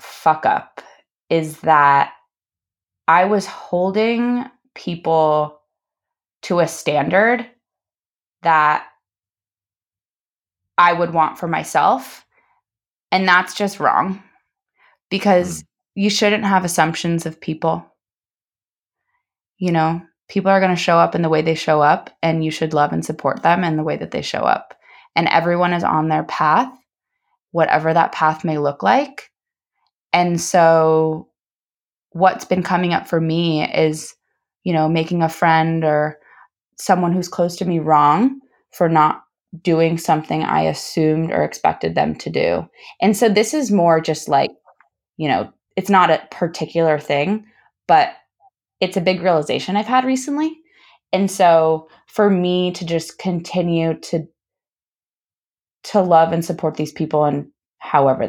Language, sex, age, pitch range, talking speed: English, female, 20-39, 155-195 Hz, 140 wpm